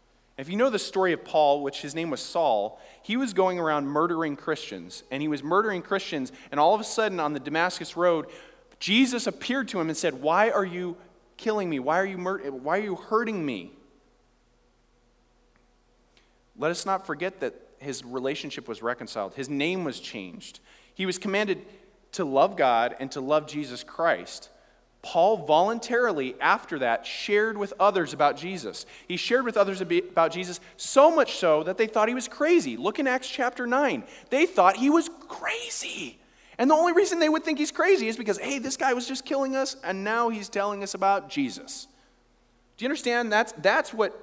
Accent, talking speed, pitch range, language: American, 190 wpm, 165-240 Hz, English